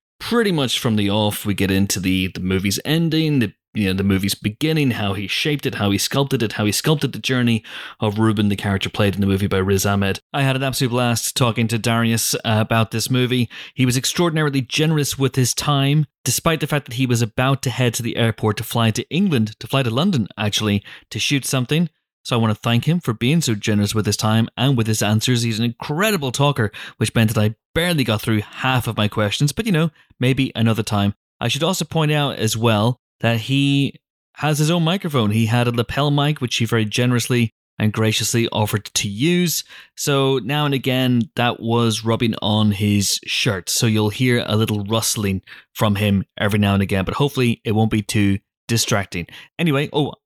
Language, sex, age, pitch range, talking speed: English, male, 30-49, 105-135 Hz, 215 wpm